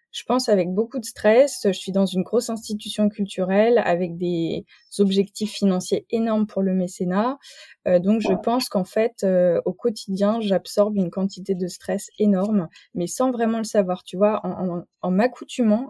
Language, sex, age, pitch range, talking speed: French, female, 20-39, 185-225 Hz, 175 wpm